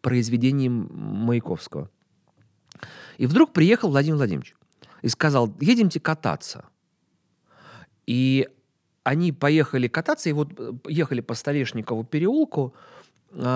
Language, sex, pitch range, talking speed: Russian, male, 125-175 Hz, 95 wpm